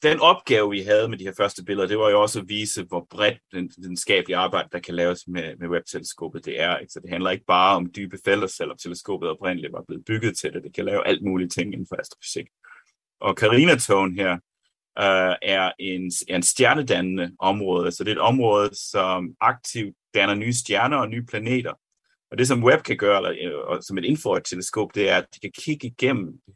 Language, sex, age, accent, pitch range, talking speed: Danish, male, 30-49, native, 90-115 Hz, 220 wpm